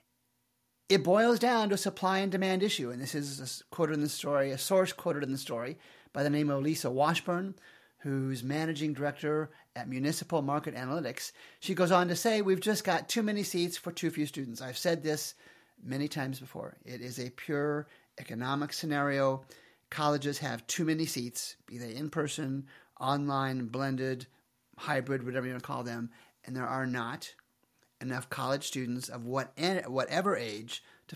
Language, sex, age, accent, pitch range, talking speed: English, male, 40-59, American, 135-180 Hz, 175 wpm